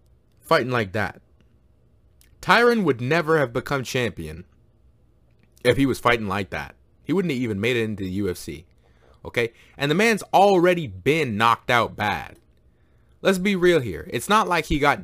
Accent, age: American, 20-39